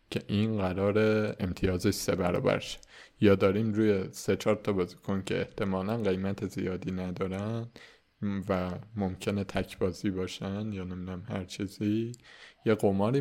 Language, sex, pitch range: Persian, male, 100-120 Hz